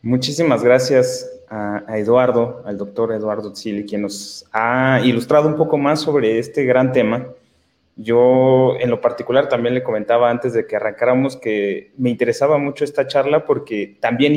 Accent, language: Mexican, Spanish